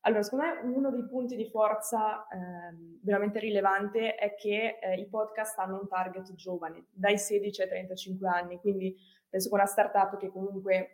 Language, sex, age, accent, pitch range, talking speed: Italian, female, 20-39, native, 185-215 Hz, 175 wpm